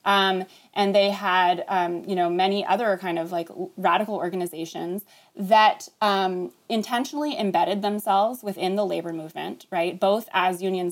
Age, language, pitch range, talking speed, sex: 20-39, English, 185-230 Hz, 150 wpm, female